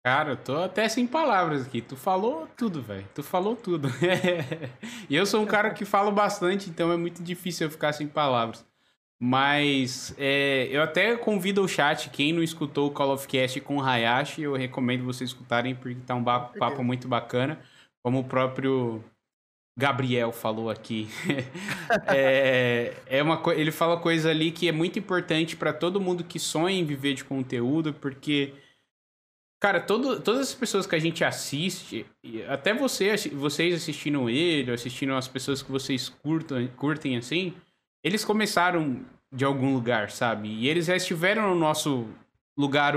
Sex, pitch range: male, 130-180 Hz